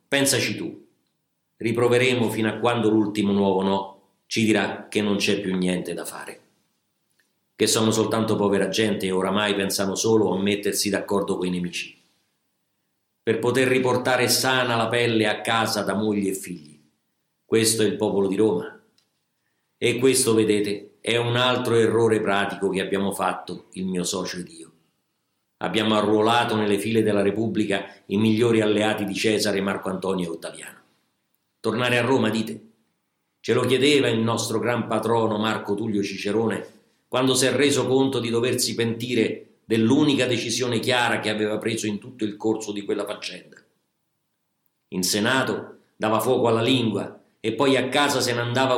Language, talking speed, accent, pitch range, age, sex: Italian, 160 wpm, native, 100-120 Hz, 50-69, male